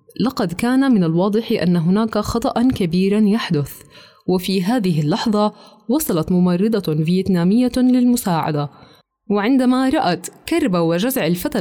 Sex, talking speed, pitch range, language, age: female, 110 wpm, 180-240 Hz, Arabic, 20-39